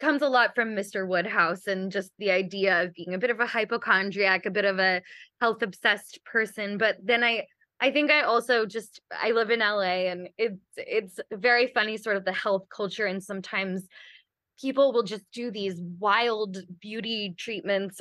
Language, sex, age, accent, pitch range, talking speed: English, female, 20-39, American, 195-250 Hz, 185 wpm